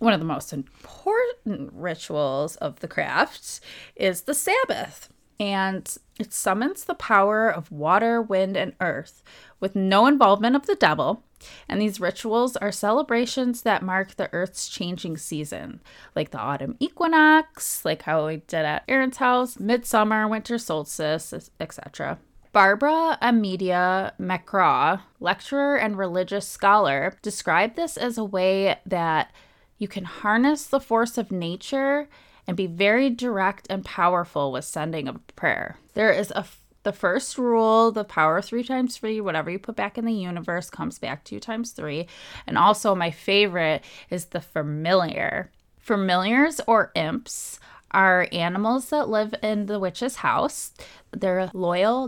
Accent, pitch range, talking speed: American, 180-245 Hz, 145 wpm